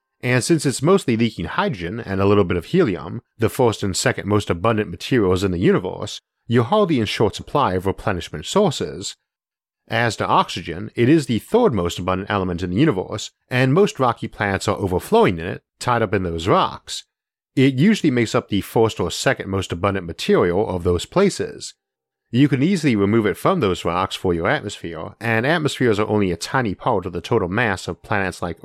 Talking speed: 200 wpm